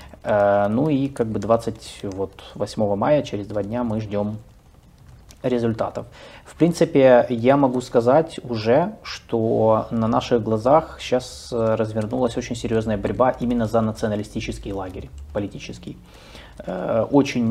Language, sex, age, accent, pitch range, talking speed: Russian, male, 20-39, native, 105-125 Hz, 115 wpm